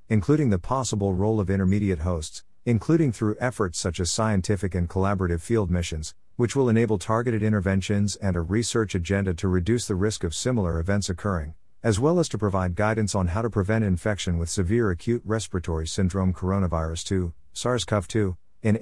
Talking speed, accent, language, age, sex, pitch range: 170 wpm, American, English, 50-69, male, 90-110 Hz